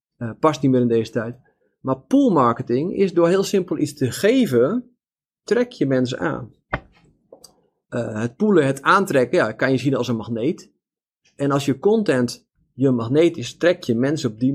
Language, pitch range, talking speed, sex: Dutch, 125-170 Hz, 185 wpm, male